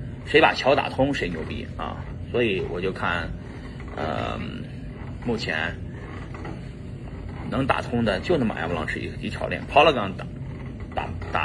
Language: Chinese